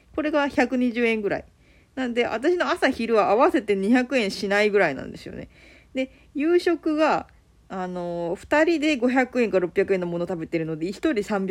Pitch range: 205-310 Hz